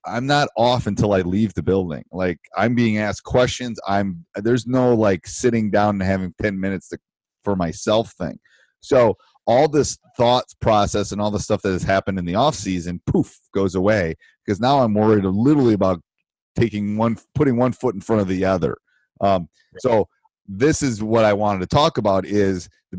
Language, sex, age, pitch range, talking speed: English, male, 30-49, 90-110 Hz, 195 wpm